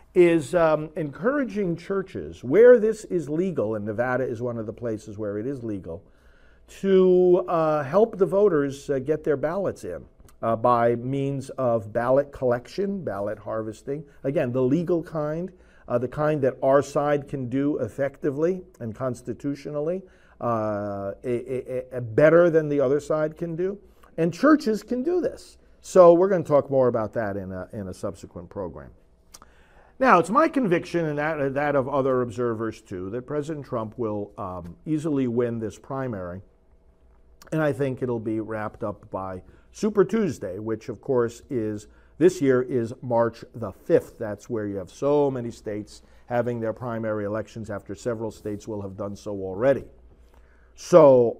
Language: English